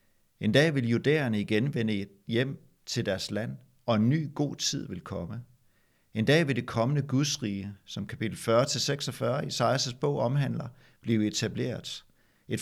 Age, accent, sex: 60-79, native, male